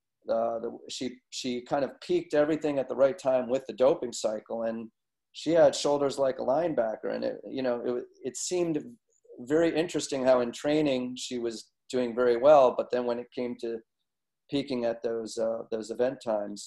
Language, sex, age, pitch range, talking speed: English, male, 30-49, 115-145 Hz, 190 wpm